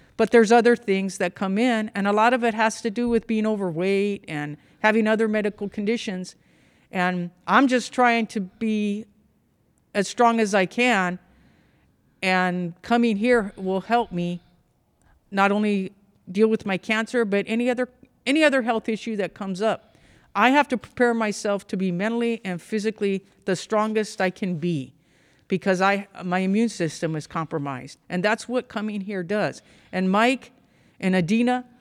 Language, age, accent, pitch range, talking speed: English, 50-69, American, 185-230 Hz, 165 wpm